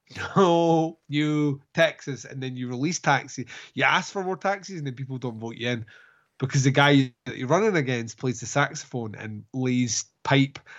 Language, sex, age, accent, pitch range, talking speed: English, male, 20-39, British, 130-155 Hz, 185 wpm